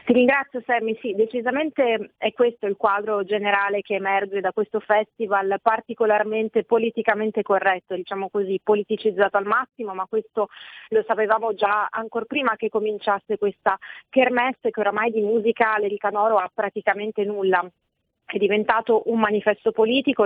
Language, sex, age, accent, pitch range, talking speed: Italian, female, 30-49, native, 200-230 Hz, 140 wpm